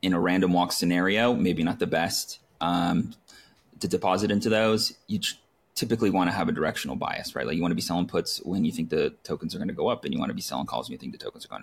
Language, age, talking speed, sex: English, 30-49, 280 wpm, male